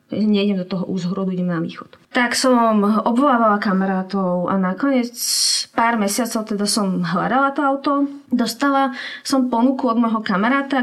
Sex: female